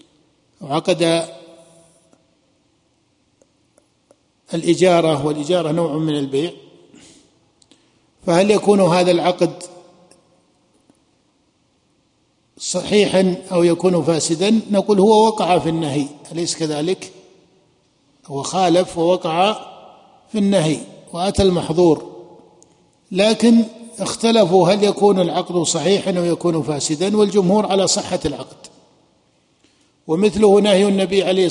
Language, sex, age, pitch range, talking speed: Arabic, male, 50-69, 170-195 Hz, 85 wpm